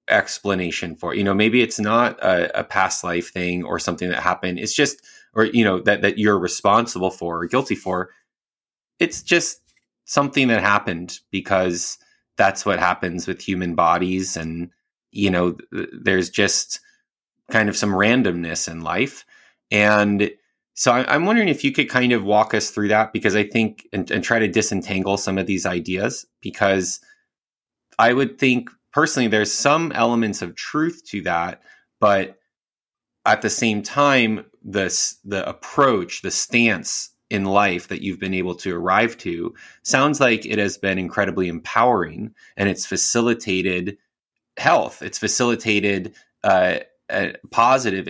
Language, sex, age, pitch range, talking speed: English, male, 20-39, 95-115 Hz, 155 wpm